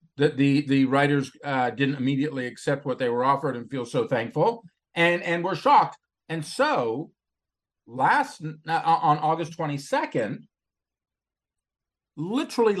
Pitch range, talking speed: 135-205 Hz, 130 wpm